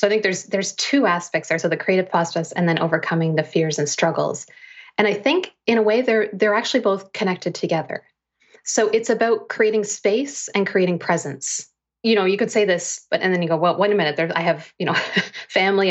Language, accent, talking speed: English, American, 225 wpm